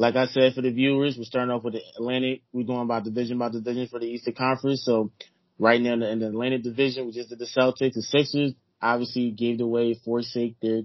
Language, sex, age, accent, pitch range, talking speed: English, male, 20-39, American, 115-140 Hz, 230 wpm